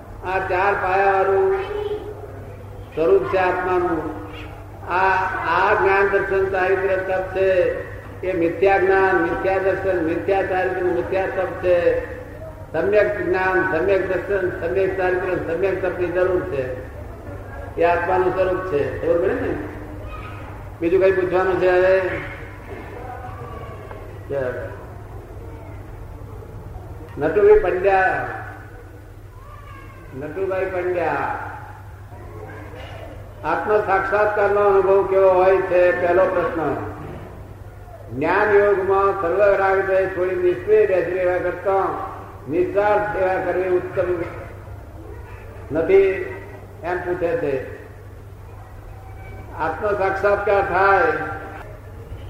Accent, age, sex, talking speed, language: native, 50-69, male, 80 wpm, Gujarati